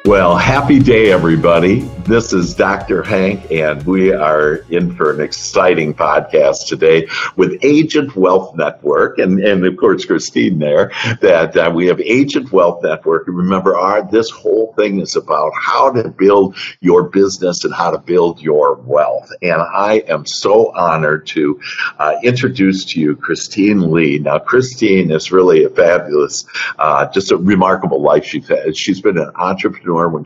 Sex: male